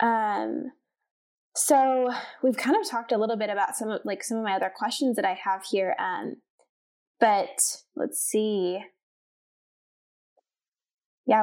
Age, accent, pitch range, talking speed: 10-29, American, 195-255 Hz, 140 wpm